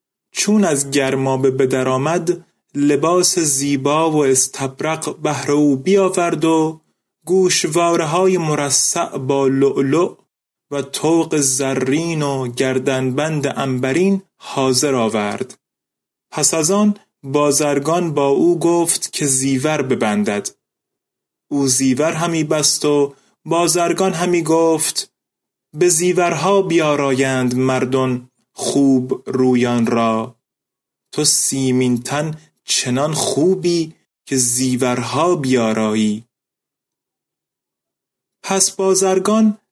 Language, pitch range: Persian, 130-170 Hz